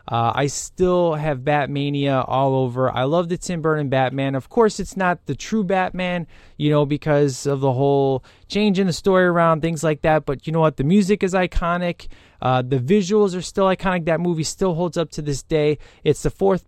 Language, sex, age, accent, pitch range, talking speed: English, male, 20-39, American, 140-180 Hz, 210 wpm